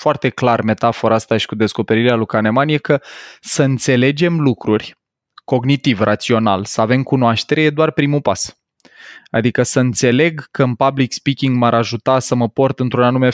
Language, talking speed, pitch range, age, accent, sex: Romanian, 165 wpm, 115-135 Hz, 20-39, native, male